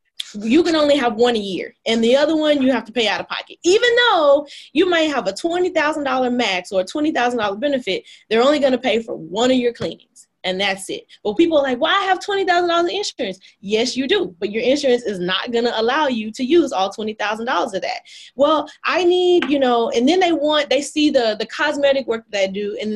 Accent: American